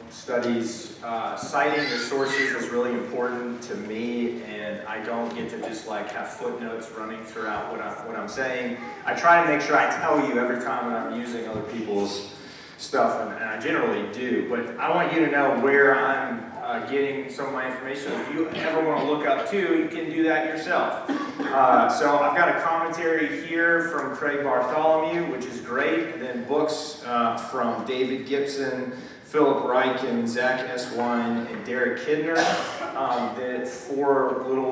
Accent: American